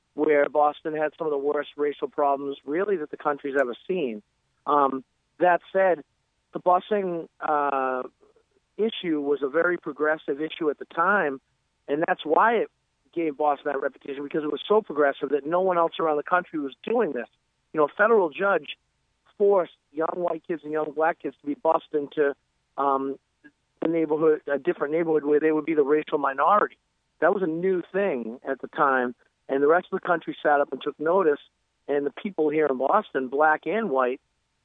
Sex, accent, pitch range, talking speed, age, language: male, American, 145-170 Hz, 190 wpm, 50-69, English